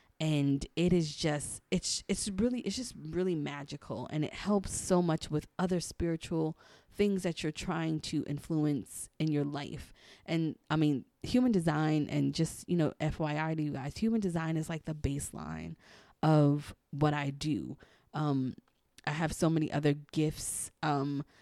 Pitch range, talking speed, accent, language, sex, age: 145-170 Hz, 165 wpm, American, English, female, 20-39